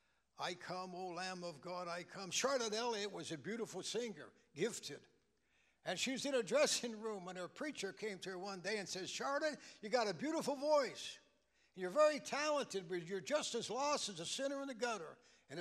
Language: English